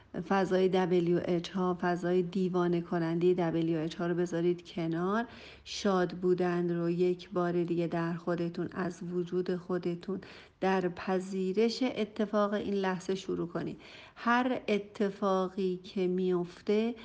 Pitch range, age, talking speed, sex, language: 175-205 Hz, 50-69, 115 wpm, female, Persian